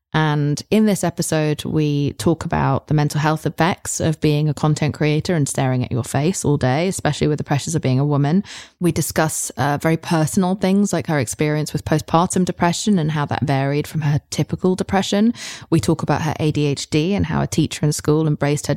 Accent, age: British, 20-39